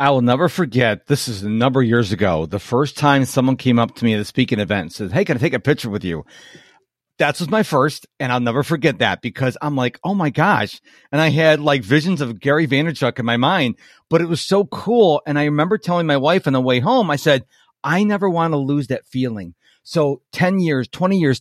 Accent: American